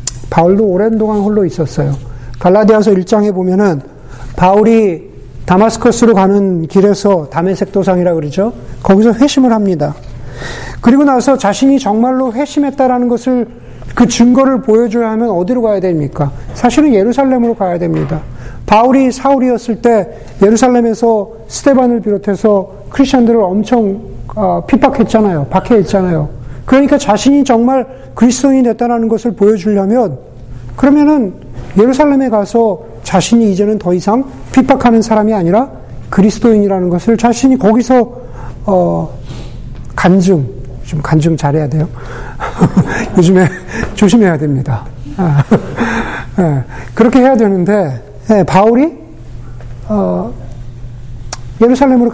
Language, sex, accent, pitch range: Korean, male, native, 145-235 Hz